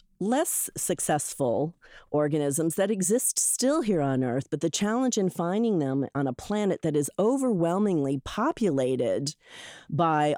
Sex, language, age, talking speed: female, English, 40-59, 135 wpm